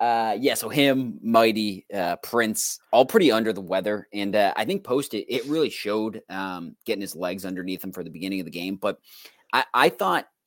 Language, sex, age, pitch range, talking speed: English, male, 30-49, 85-100 Hz, 210 wpm